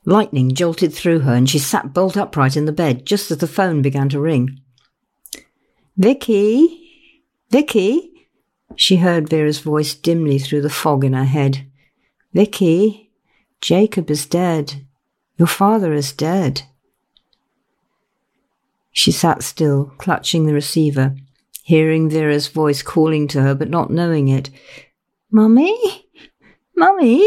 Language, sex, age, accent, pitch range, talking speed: English, female, 50-69, British, 145-215 Hz, 130 wpm